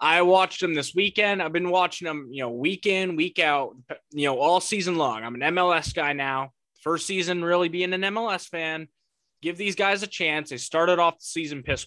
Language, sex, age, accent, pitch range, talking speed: English, male, 20-39, American, 140-190 Hz, 215 wpm